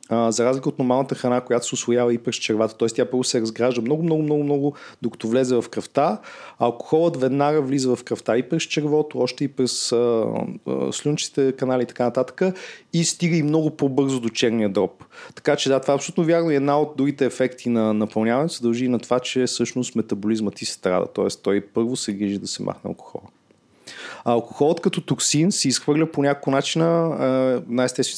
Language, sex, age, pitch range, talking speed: Bulgarian, male, 30-49, 115-140 Hz, 190 wpm